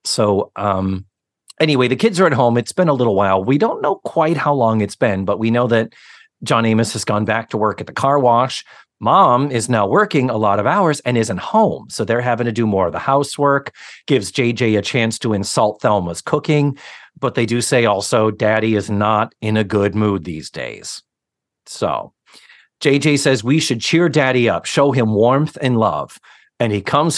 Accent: American